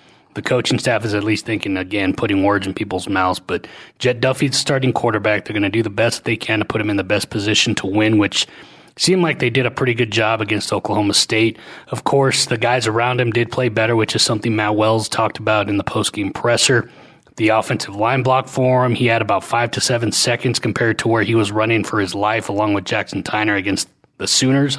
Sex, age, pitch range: male, 30-49, 110-125 Hz